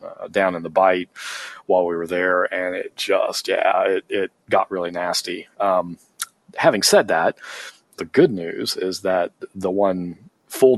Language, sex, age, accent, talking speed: Dutch, male, 40-59, American, 165 wpm